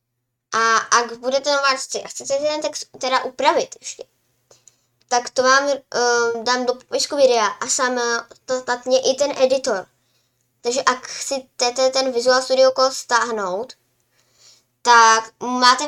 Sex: male